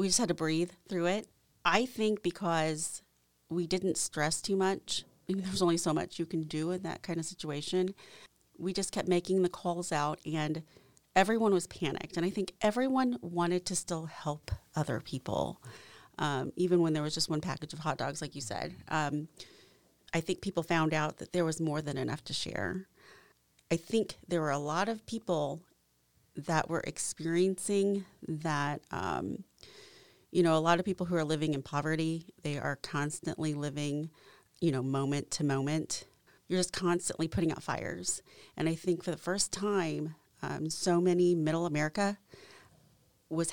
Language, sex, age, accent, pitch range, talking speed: English, female, 30-49, American, 150-185 Hz, 175 wpm